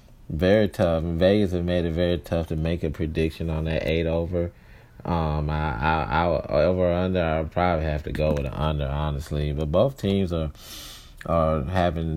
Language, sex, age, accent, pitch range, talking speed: English, male, 30-49, American, 75-90 Hz, 195 wpm